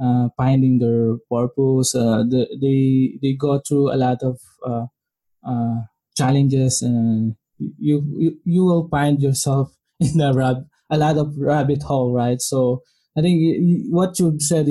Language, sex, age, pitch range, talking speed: English, male, 20-39, 130-155 Hz, 155 wpm